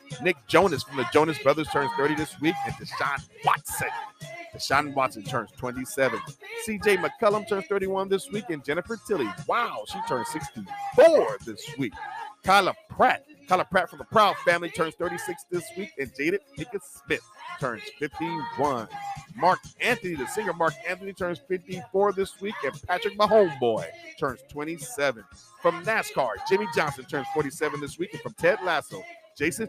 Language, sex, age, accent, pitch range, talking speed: English, male, 40-59, American, 145-210 Hz, 160 wpm